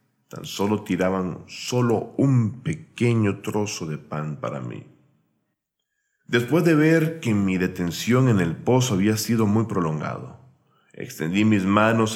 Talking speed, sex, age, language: 135 wpm, male, 40-59, Spanish